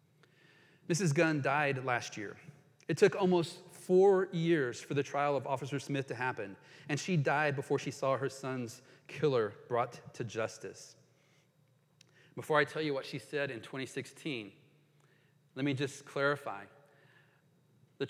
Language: English